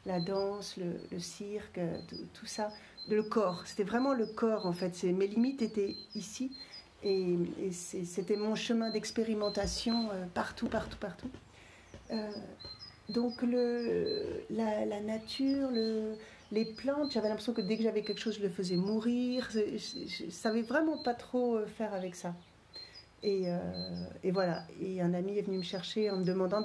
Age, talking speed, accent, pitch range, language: 40-59, 170 wpm, French, 175-215 Hz, French